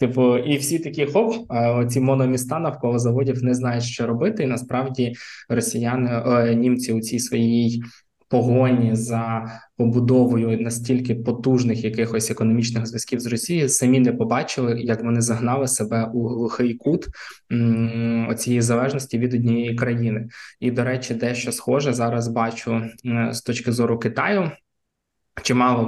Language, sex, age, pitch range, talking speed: Ukrainian, male, 20-39, 115-125 Hz, 135 wpm